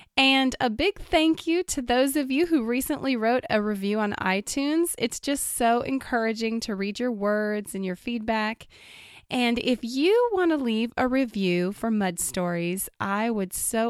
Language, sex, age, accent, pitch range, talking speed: English, female, 20-39, American, 195-255 Hz, 175 wpm